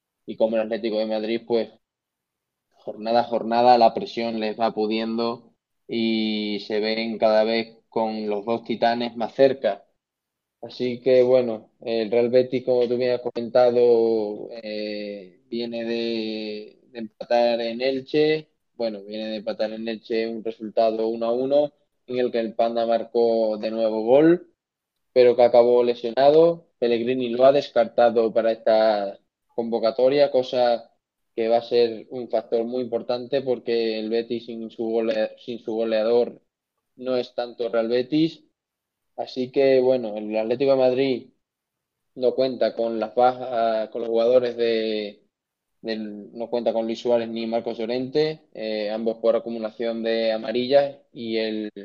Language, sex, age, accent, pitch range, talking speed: Spanish, male, 20-39, Spanish, 110-125 Hz, 150 wpm